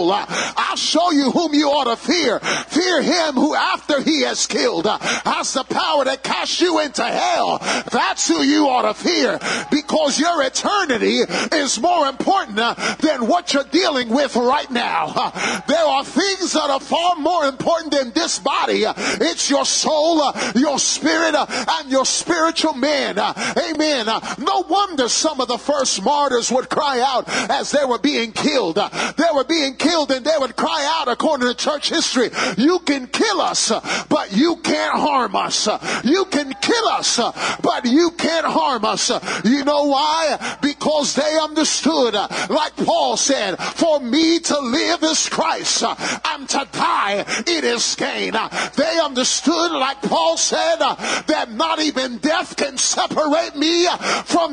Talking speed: 170 wpm